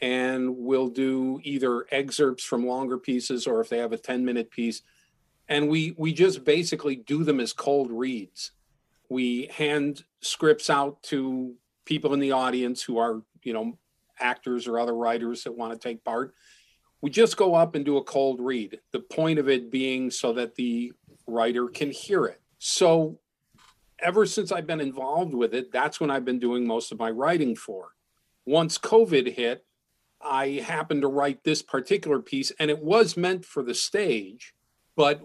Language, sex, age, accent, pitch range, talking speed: English, male, 50-69, American, 125-150 Hz, 180 wpm